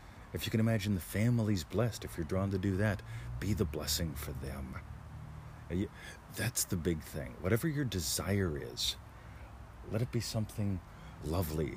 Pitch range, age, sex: 80-100 Hz, 40-59, male